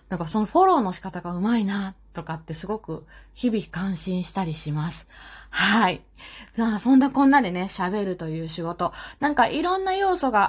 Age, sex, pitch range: 20-39, female, 200-295 Hz